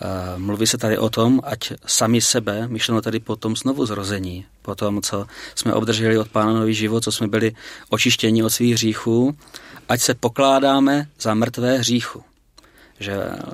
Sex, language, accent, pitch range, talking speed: male, Czech, native, 105-125 Hz, 165 wpm